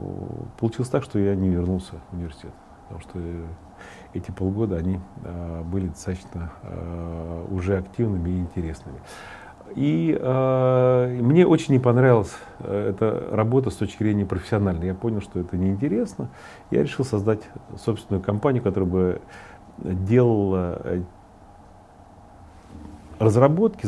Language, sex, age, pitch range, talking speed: Russian, male, 40-59, 90-115 Hz, 115 wpm